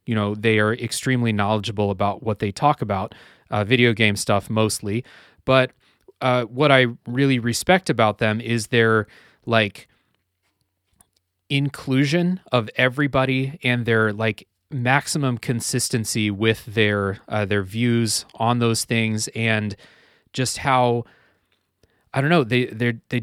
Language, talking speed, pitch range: English, 135 wpm, 105-125 Hz